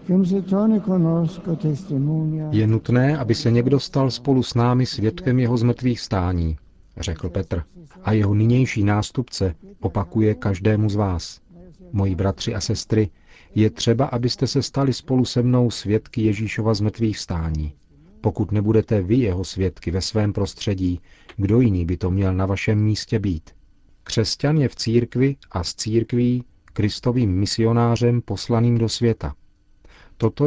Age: 40-59